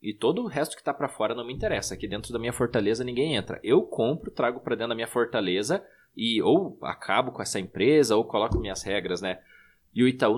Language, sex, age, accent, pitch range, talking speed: Portuguese, male, 20-39, Brazilian, 115-160 Hz, 230 wpm